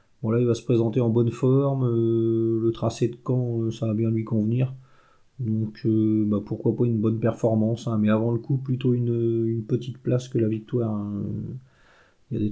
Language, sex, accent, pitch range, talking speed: French, male, French, 110-125 Hz, 210 wpm